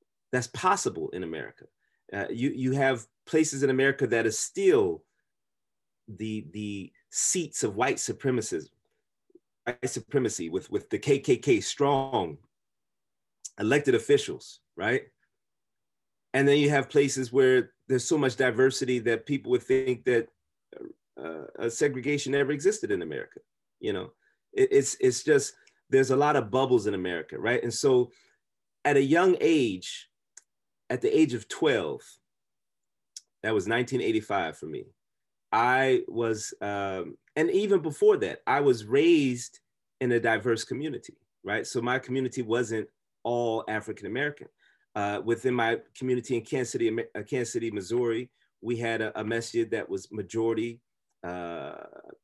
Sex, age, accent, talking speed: male, 30-49, American, 140 wpm